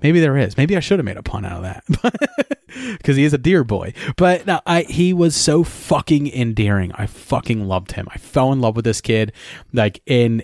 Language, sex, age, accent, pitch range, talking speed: English, male, 30-49, American, 110-150 Hz, 230 wpm